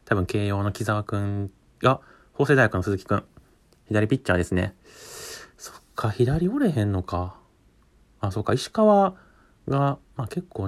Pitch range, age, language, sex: 95-135 Hz, 30-49, Japanese, male